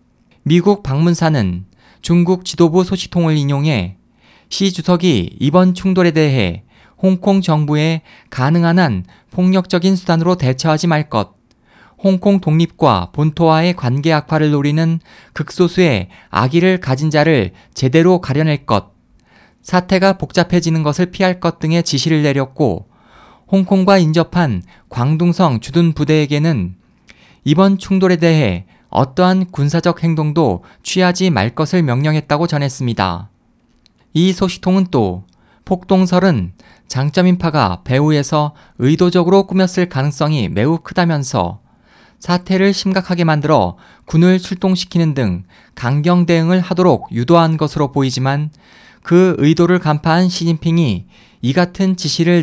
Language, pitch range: Korean, 140-180 Hz